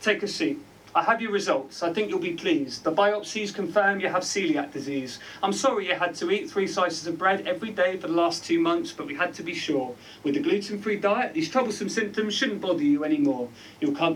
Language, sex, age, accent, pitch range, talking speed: English, male, 30-49, British, 150-215 Hz, 235 wpm